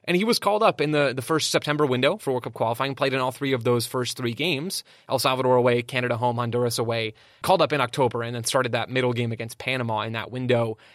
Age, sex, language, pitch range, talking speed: 20-39, male, English, 120-140 Hz, 250 wpm